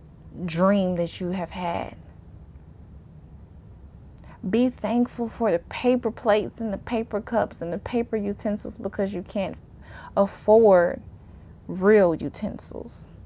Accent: American